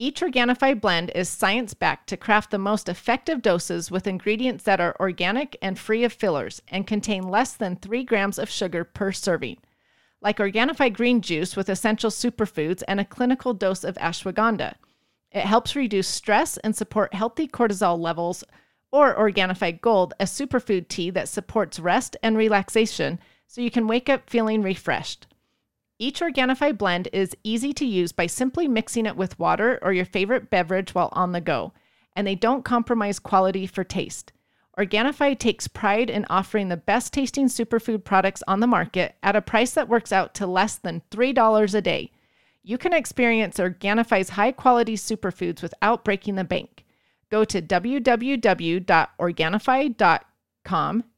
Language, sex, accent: English, female, American